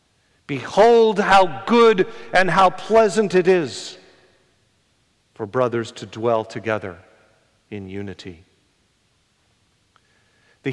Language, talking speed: English, 90 wpm